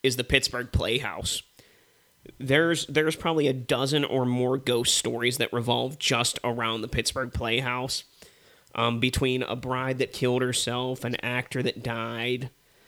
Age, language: 30-49, English